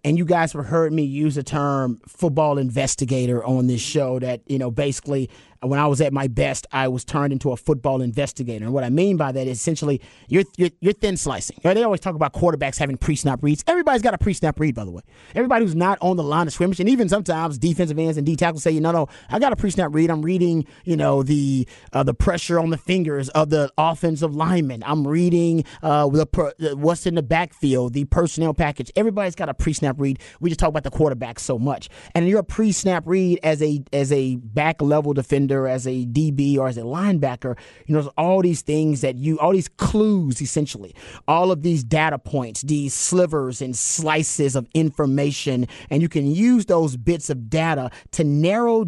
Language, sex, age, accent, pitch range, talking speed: English, male, 30-49, American, 135-170 Hz, 215 wpm